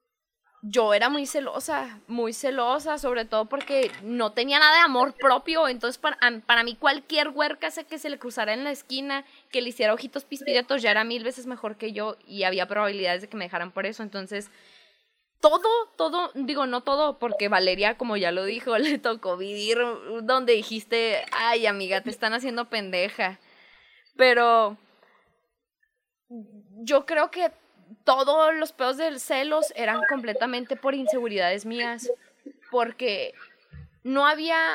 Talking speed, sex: 155 wpm, female